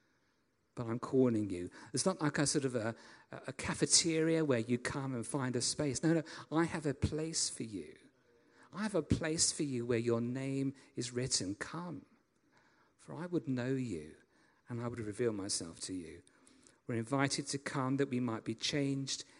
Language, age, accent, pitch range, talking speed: English, 50-69, British, 115-145 Hz, 190 wpm